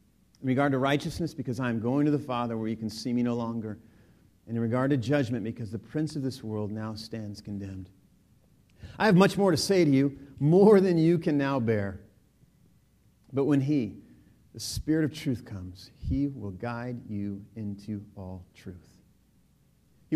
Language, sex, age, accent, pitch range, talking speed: English, male, 40-59, American, 110-155 Hz, 185 wpm